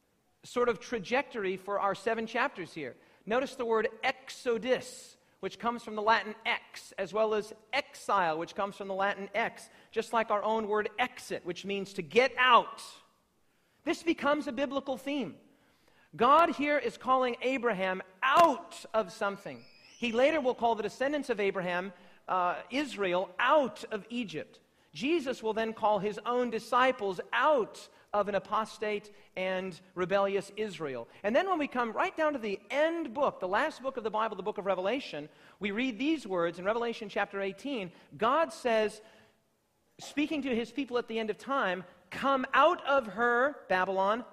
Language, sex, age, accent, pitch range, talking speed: English, male, 40-59, American, 195-265 Hz, 170 wpm